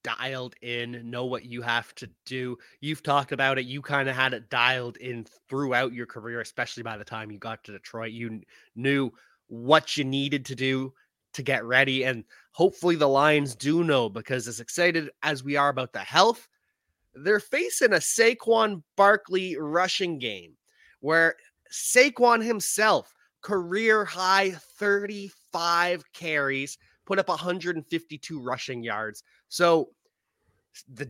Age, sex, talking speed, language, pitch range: 20-39, male, 145 wpm, English, 130-180 Hz